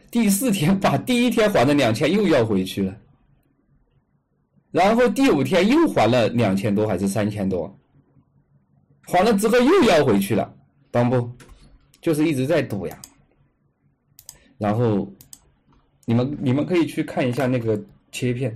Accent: native